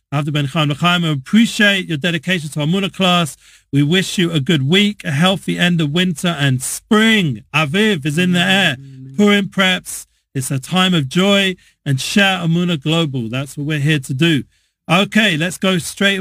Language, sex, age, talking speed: English, male, 40-59, 175 wpm